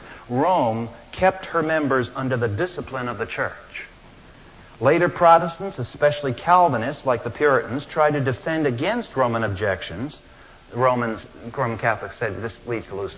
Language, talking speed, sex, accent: English, 135 wpm, male, American